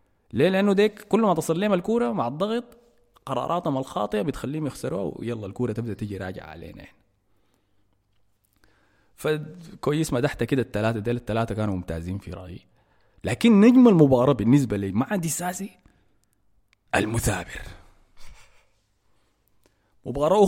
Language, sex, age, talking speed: Arabic, male, 30-49, 115 wpm